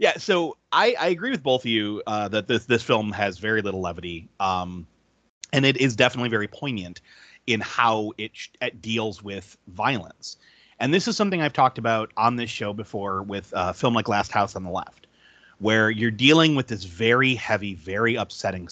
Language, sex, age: English, male, 30-49